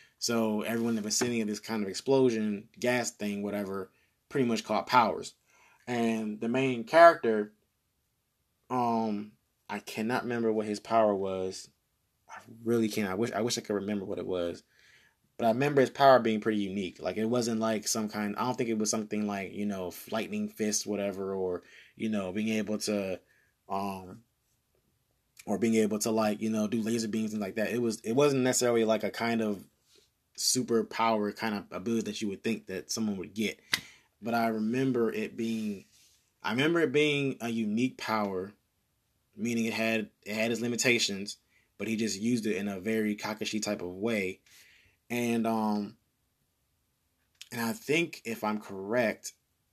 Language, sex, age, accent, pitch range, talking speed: English, male, 20-39, American, 105-120 Hz, 180 wpm